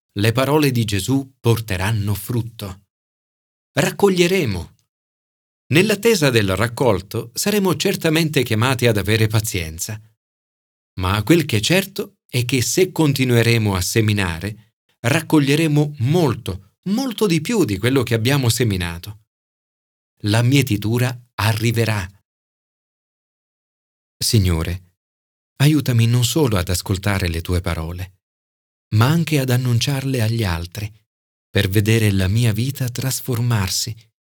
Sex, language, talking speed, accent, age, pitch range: male, Italian, 105 wpm, native, 40-59, 100-140 Hz